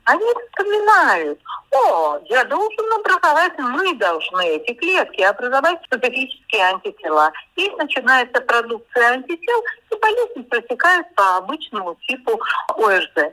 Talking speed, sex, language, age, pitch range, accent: 110 wpm, female, Russian, 50-69, 215-350 Hz, native